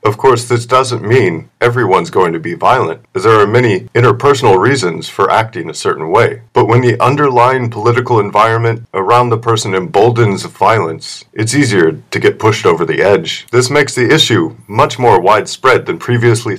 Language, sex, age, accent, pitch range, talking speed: English, male, 40-59, American, 115-140 Hz, 175 wpm